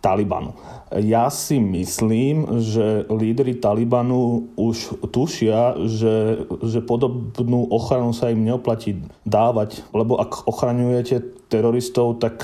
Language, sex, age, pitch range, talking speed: Slovak, male, 30-49, 105-120 Hz, 105 wpm